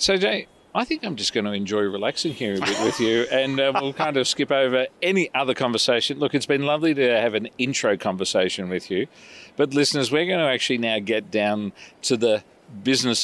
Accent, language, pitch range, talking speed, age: Australian, English, 100-130 Hz, 220 wpm, 40-59